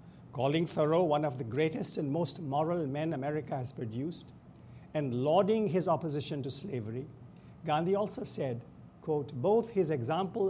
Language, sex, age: English, male, 60-79